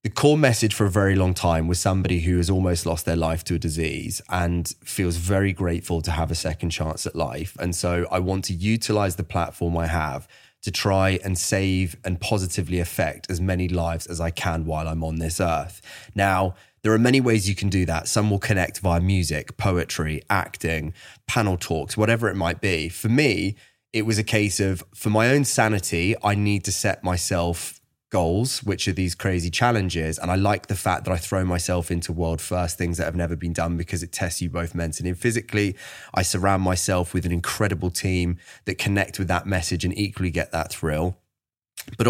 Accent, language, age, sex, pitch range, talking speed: British, English, 20-39, male, 85-105 Hz, 210 wpm